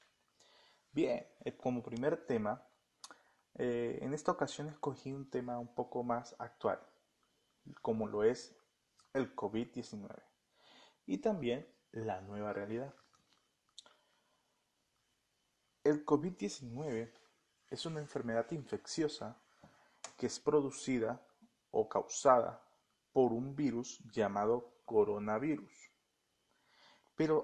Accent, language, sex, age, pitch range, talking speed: Venezuelan, Spanish, male, 30-49, 120-160 Hz, 90 wpm